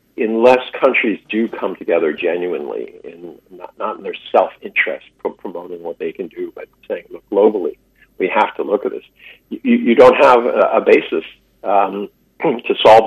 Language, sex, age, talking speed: English, male, 50-69, 170 wpm